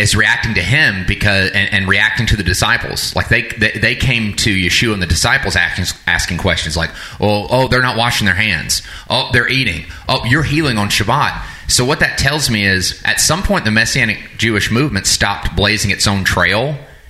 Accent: American